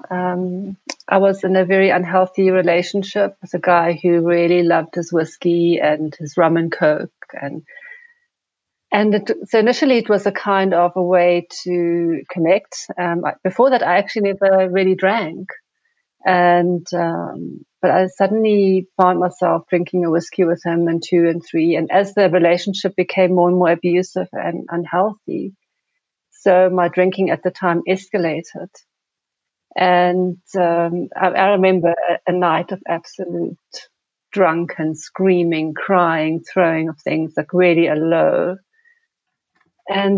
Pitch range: 170-195 Hz